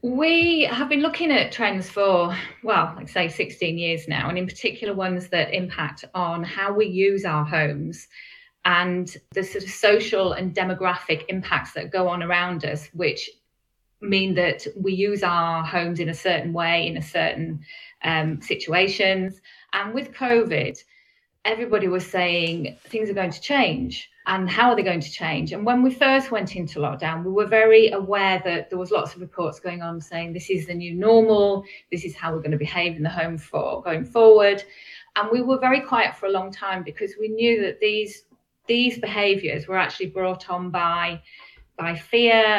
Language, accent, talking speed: English, British, 185 wpm